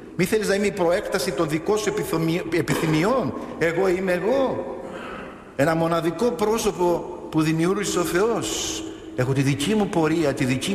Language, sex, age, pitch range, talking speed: Greek, male, 50-69, 130-195 Hz, 150 wpm